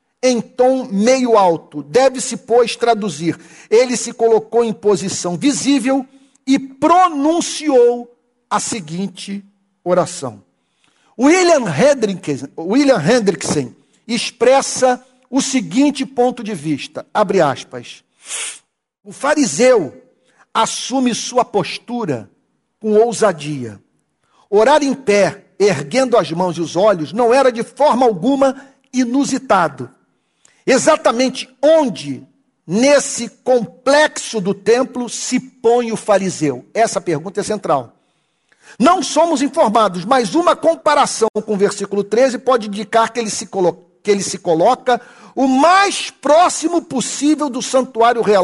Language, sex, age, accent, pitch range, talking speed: Portuguese, male, 50-69, Brazilian, 200-270 Hz, 110 wpm